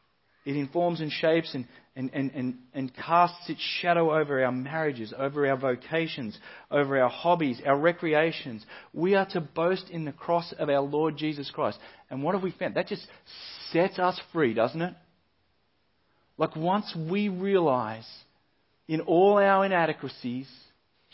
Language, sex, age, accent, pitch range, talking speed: English, male, 40-59, Australian, 115-170 Hz, 155 wpm